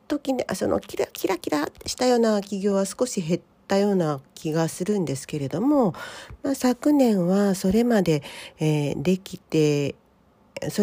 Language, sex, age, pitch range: Japanese, female, 40-59, 165-225 Hz